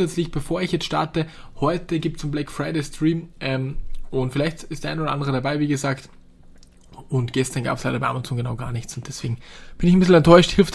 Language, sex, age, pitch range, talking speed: German, male, 20-39, 130-155 Hz, 225 wpm